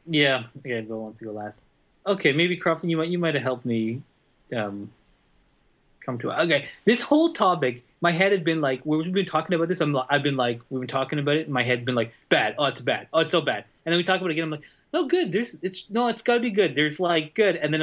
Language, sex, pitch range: English, male, 135-190 Hz